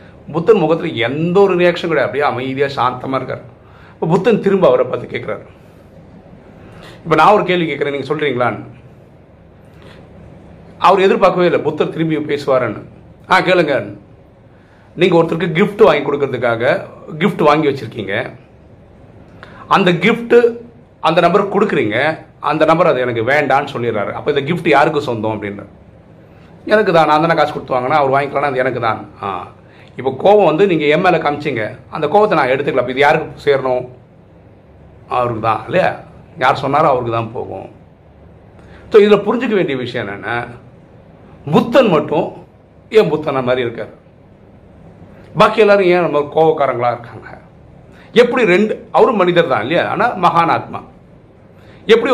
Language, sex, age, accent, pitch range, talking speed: Tamil, male, 40-59, native, 120-175 Hz, 75 wpm